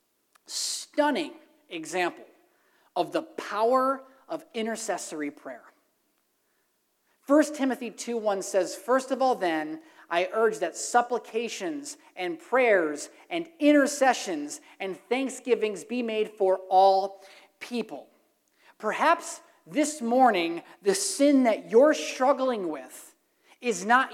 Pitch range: 210-330 Hz